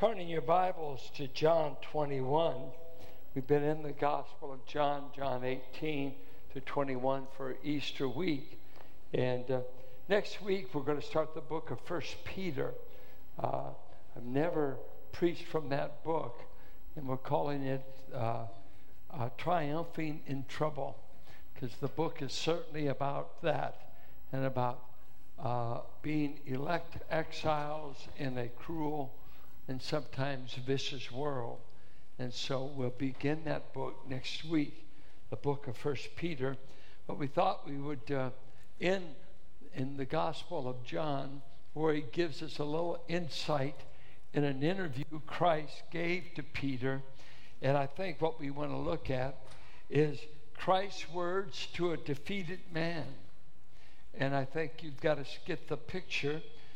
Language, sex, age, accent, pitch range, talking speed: English, male, 60-79, American, 135-160 Hz, 140 wpm